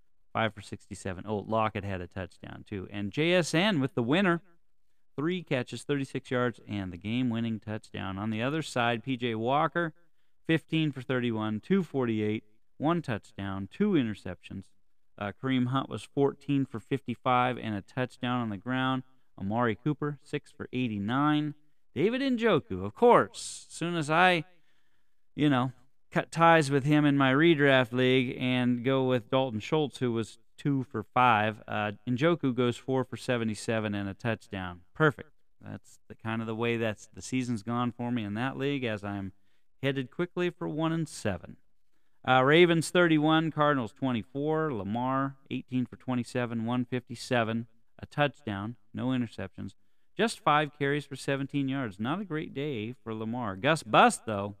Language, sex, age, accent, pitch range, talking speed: English, male, 30-49, American, 110-145 Hz, 160 wpm